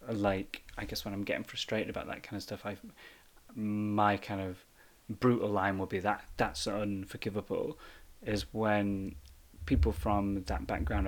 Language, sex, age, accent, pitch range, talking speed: English, male, 30-49, British, 95-110 Hz, 155 wpm